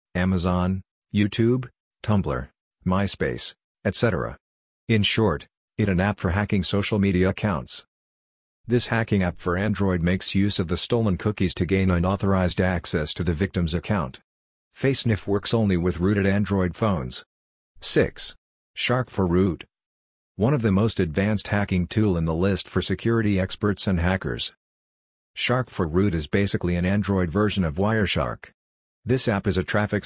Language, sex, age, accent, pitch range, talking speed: English, male, 50-69, American, 90-105 Hz, 150 wpm